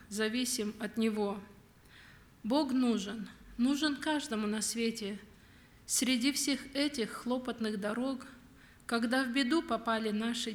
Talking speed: 110 wpm